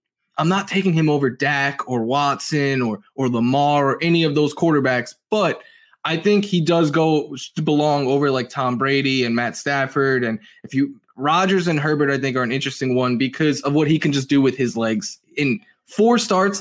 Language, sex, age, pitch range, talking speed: English, male, 20-39, 135-175 Hz, 200 wpm